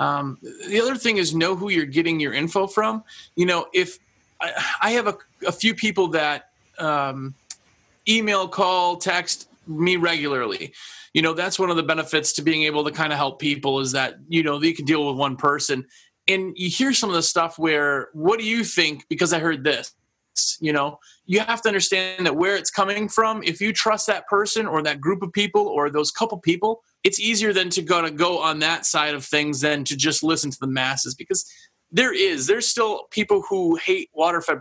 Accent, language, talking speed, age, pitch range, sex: American, English, 210 wpm, 30-49, 155-215 Hz, male